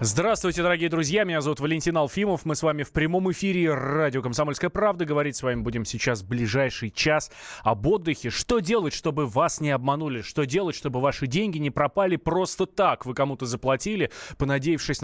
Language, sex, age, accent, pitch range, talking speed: Russian, male, 20-39, native, 120-155 Hz, 175 wpm